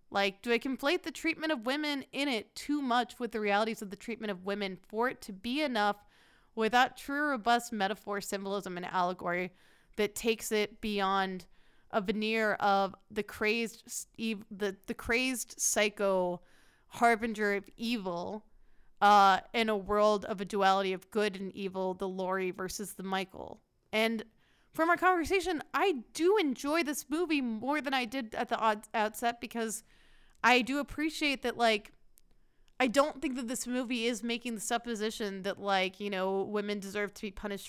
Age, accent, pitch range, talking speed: 20-39, American, 200-250 Hz, 170 wpm